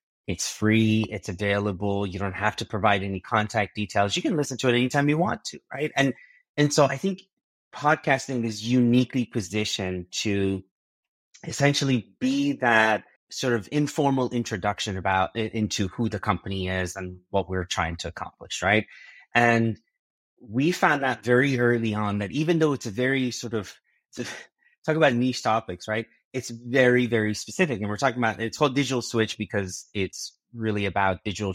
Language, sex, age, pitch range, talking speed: English, male, 30-49, 105-135 Hz, 175 wpm